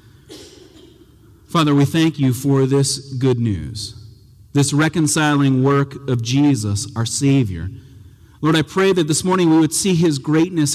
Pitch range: 115-150 Hz